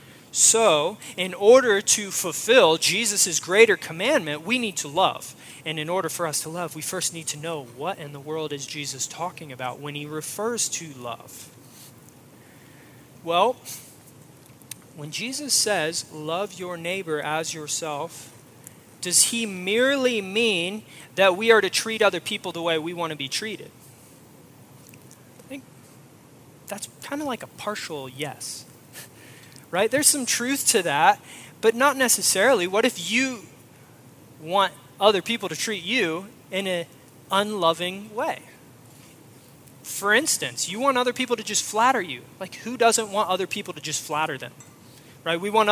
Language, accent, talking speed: English, American, 155 wpm